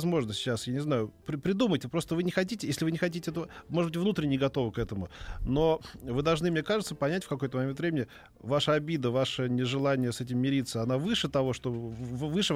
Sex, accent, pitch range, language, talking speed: male, native, 120-160 Hz, Russian, 210 wpm